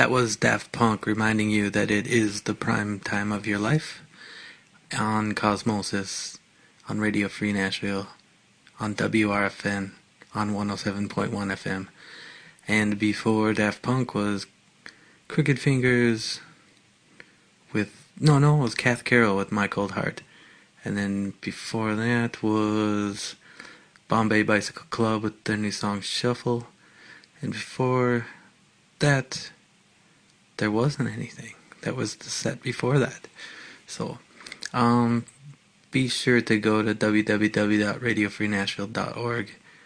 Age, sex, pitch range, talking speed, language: 30-49, male, 105-120 Hz, 115 wpm, English